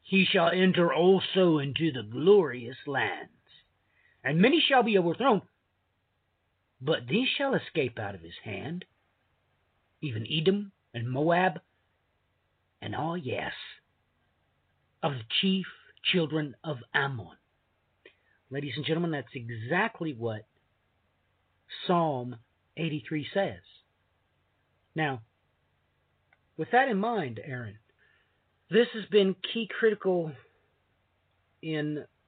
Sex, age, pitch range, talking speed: male, 50-69, 100-165 Hz, 105 wpm